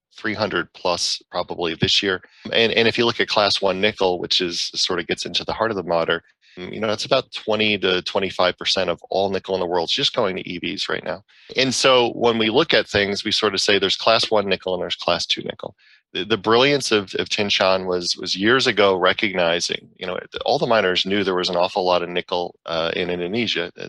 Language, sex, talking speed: English, male, 240 wpm